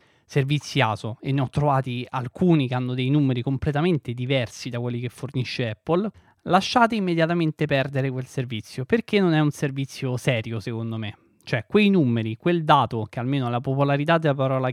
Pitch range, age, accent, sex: 125-160 Hz, 20-39, native, male